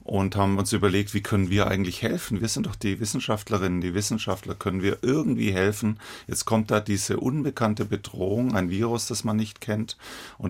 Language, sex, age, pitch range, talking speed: German, male, 40-59, 95-110 Hz, 190 wpm